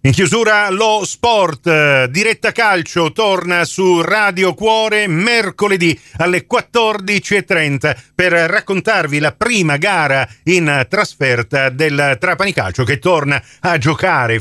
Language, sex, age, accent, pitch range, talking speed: Italian, male, 50-69, native, 140-195 Hz, 110 wpm